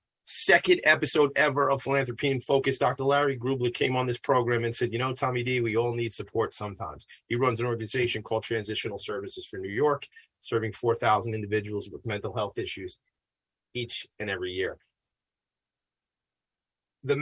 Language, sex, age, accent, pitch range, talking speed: English, male, 30-49, American, 115-150 Hz, 165 wpm